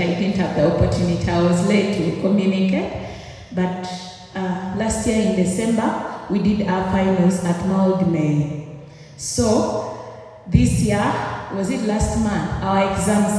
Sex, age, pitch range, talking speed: female, 30-49, 160-205 Hz, 140 wpm